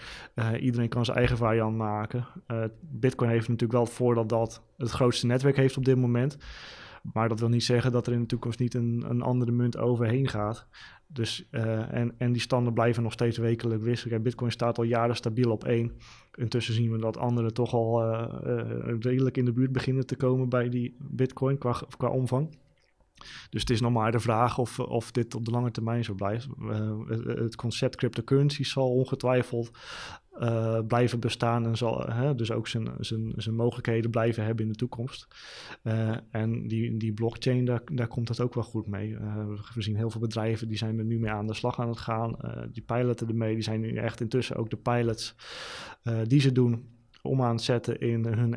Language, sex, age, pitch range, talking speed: Dutch, male, 20-39, 115-125 Hz, 205 wpm